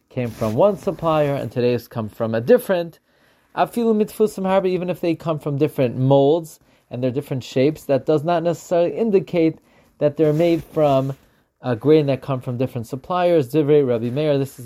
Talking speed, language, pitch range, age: 165 wpm, English, 130-170 Hz, 30-49